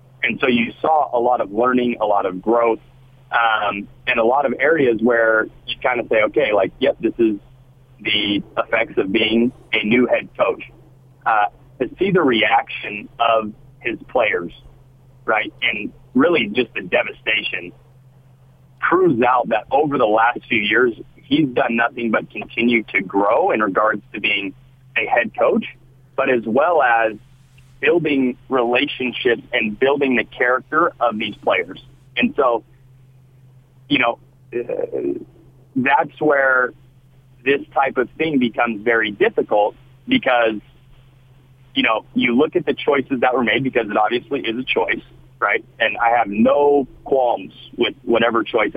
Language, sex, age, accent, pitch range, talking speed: English, male, 40-59, American, 120-135 Hz, 155 wpm